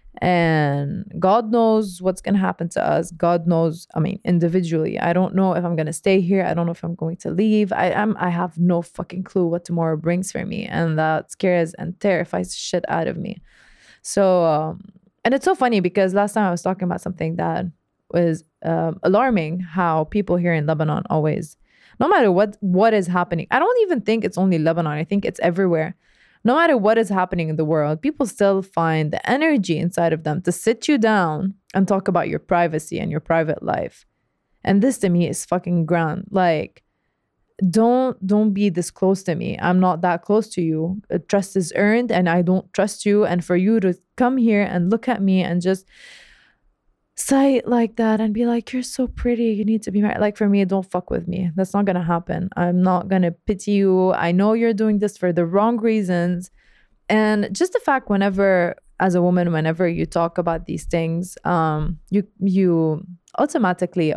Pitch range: 170-210 Hz